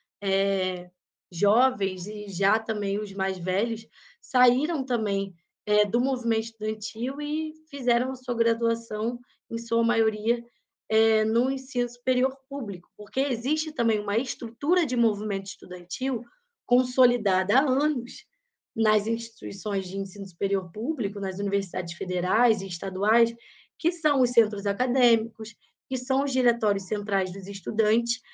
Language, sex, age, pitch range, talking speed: Portuguese, female, 20-39, 215-265 Hz, 125 wpm